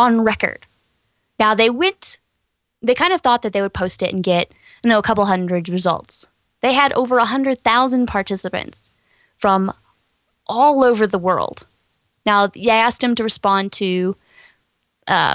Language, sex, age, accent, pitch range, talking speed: English, female, 10-29, American, 190-235 Hz, 165 wpm